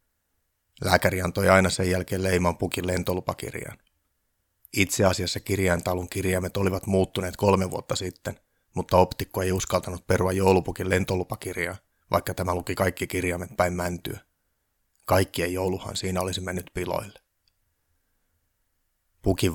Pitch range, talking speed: 90-100 Hz, 115 wpm